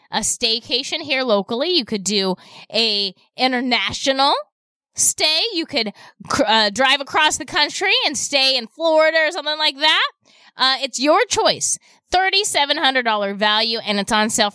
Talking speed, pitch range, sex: 145 wpm, 205-270 Hz, female